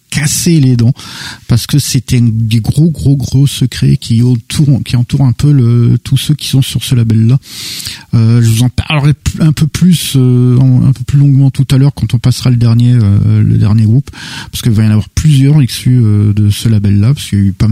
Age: 50-69